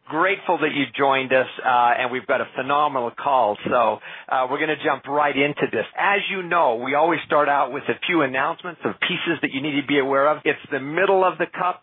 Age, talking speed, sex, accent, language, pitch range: 50-69, 240 wpm, male, American, English, 140-185 Hz